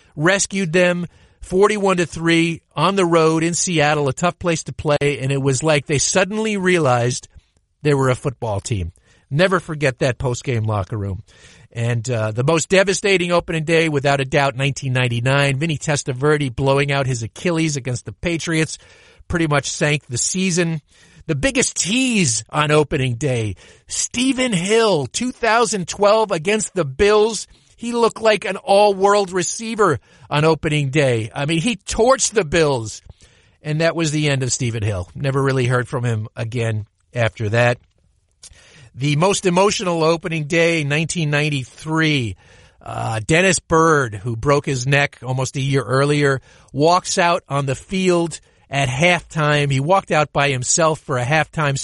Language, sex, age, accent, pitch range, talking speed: English, male, 50-69, American, 130-175 Hz, 155 wpm